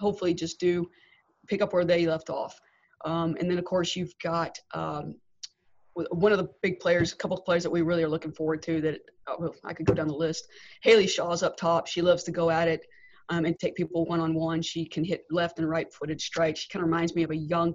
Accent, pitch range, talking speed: American, 165-180 Hz, 235 wpm